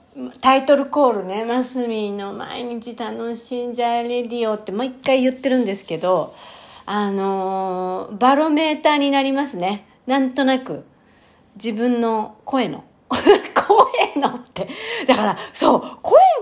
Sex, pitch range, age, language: female, 200-270 Hz, 40-59, Japanese